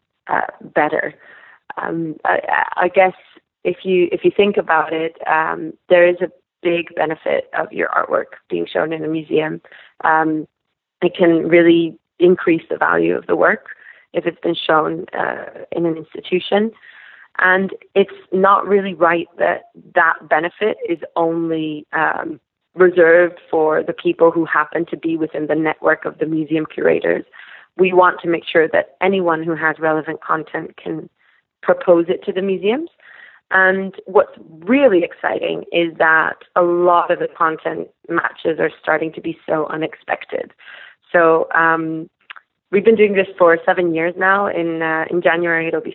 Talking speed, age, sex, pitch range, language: 160 wpm, 20-39, female, 160-185 Hz, English